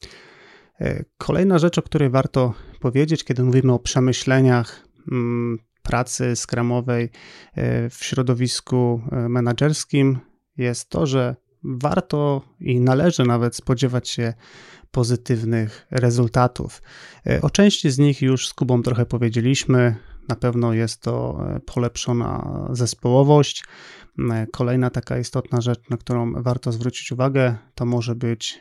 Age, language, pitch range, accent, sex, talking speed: 30-49, Polish, 120-135 Hz, native, male, 110 wpm